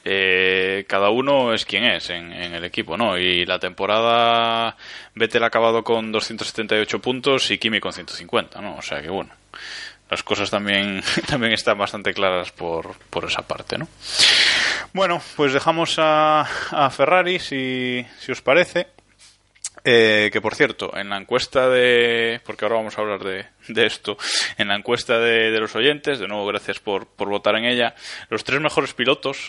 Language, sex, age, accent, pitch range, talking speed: Spanish, male, 20-39, Spanish, 100-125 Hz, 175 wpm